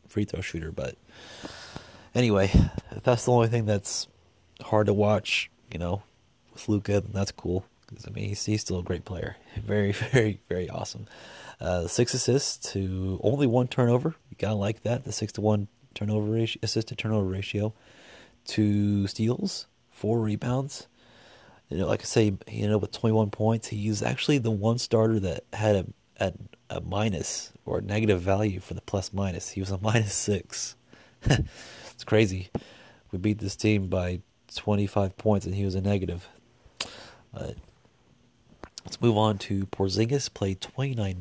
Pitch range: 95-115 Hz